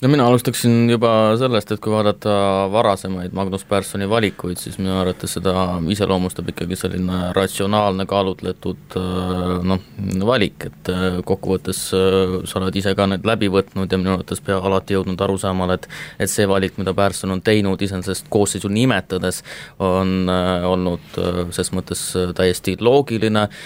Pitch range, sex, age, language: 90-100 Hz, male, 20-39, English